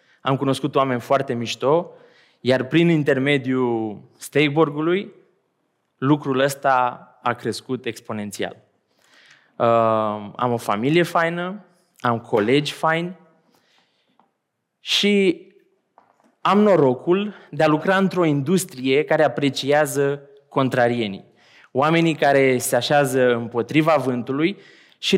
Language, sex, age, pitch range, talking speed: Romanian, male, 20-39, 130-165 Hz, 95 wpm